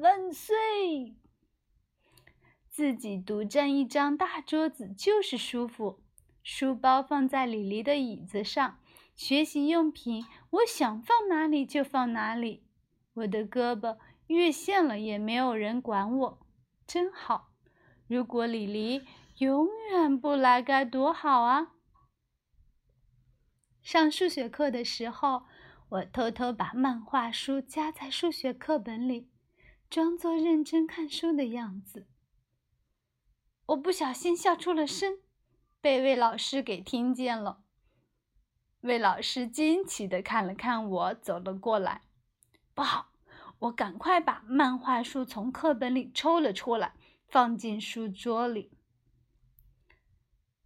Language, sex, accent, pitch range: Chinese, female, native, 215-300 Hz